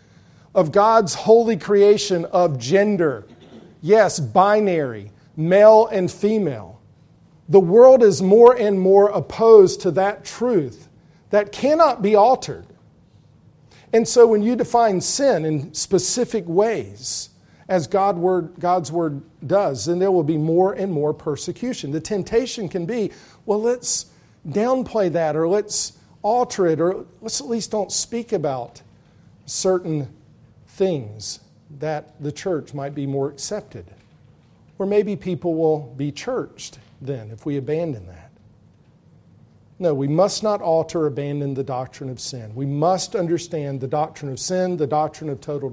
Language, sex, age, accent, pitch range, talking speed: English, male, 50-69, American, 145-205 Hz, 140 wpm